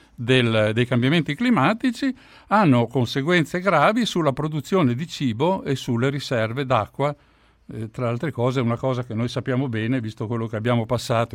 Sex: male